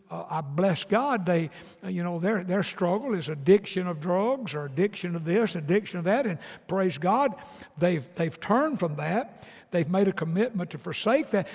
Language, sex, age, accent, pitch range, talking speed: English, male, 60-79, American, 180-235 Hz, 185 wpm